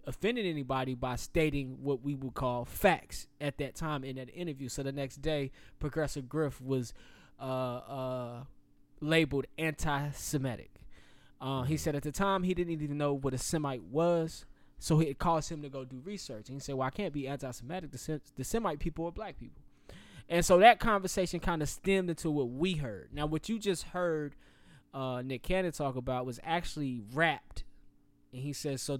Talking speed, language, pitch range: 185 wpm, English, 125-160 Hz